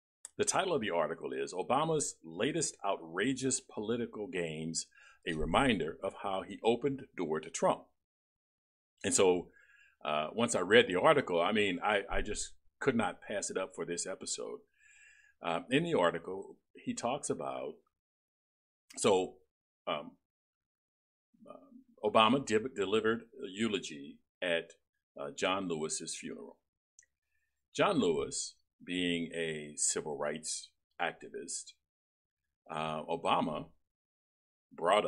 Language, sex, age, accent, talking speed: English, male, 50-69, American, 120 wpm